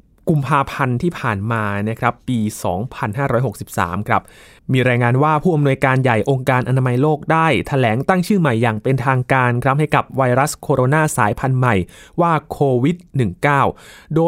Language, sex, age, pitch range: Thai, male, 20-39, 125-155 Hz